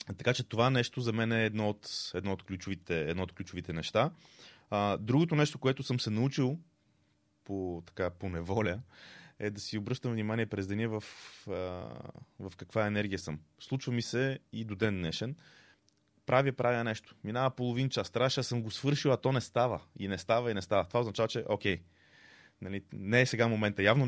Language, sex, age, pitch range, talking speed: Bulgarian, male, 20-39, 95-120 Hz, 190 wpm